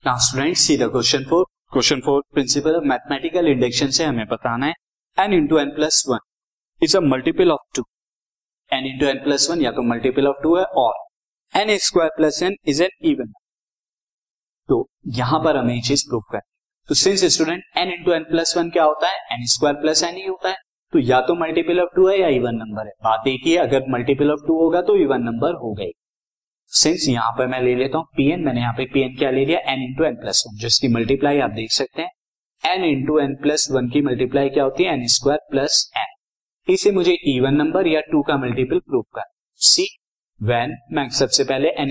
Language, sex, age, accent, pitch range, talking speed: Hindi, male, 20-39, native, 130-170 Hz, 175 wpm